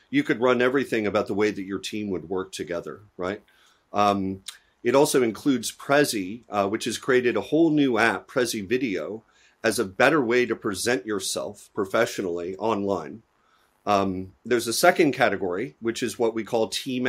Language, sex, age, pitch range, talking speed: English, male, 40-59, 100-125 Hz, 170 wpm